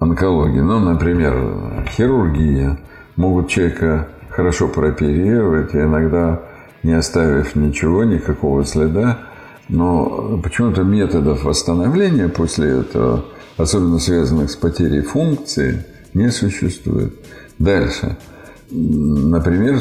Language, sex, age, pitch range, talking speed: Russian, male, 50-69, 80-105 Hz, 95 wpm